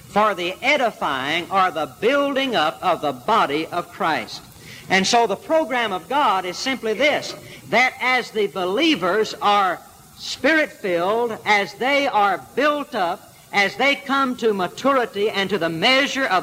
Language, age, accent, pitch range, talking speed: English, 60-79, American, 180-250 Hz, 155 wpm